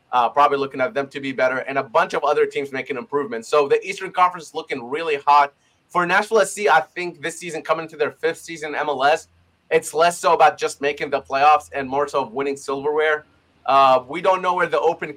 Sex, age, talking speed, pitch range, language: male, 30-49, 225 wpm, 140-170 Hz, English